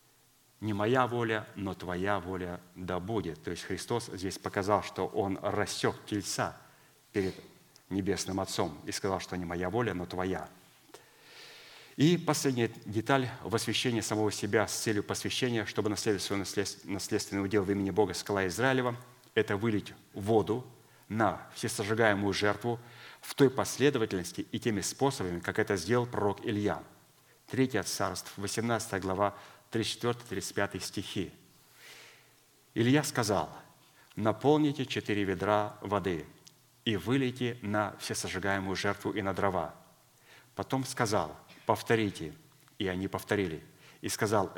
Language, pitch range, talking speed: Russian, 100-120 Hz, 125 wpm